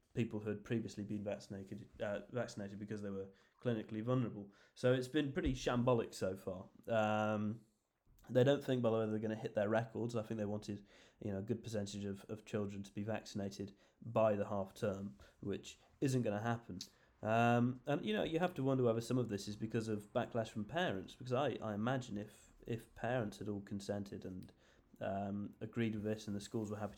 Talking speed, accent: 210 wpm, British